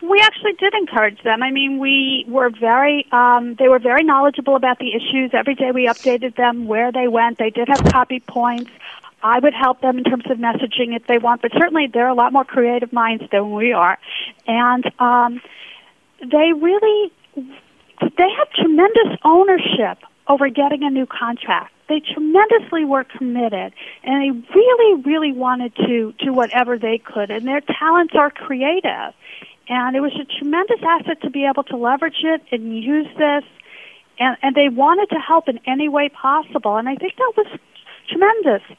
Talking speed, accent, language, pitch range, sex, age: 180 wpm, American, English, 235-290 Hz, female, 40-59